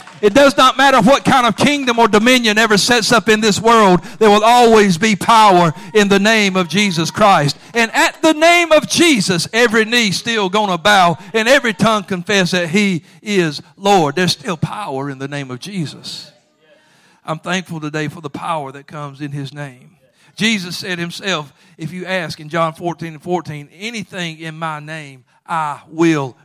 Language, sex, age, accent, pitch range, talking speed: English, male, 50-69, American, 155-195 Hz, 190 wpm